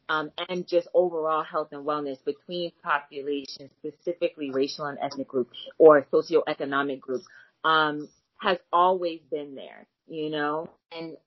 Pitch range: 145-180 Hz